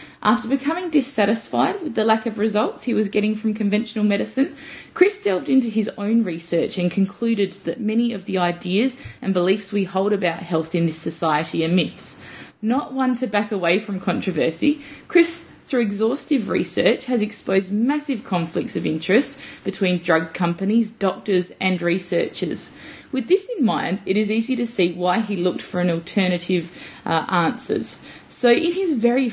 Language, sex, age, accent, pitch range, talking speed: English, female, 20-39, Australian, 180-235 Hz, 170 wpm